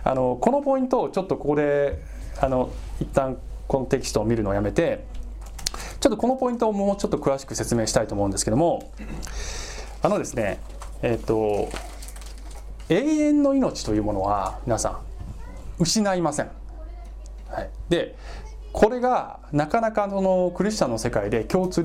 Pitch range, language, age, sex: 110-180 Hz, Japanese, 20-39, male